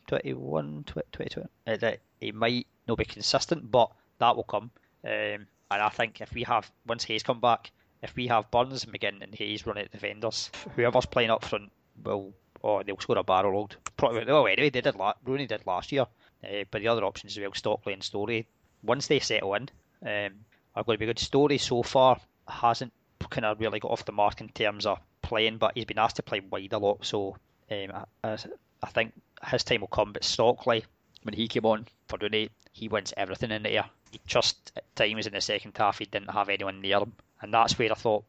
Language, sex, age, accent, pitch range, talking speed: English, male, 20-39, British, 100-120 Hz, 225 wpm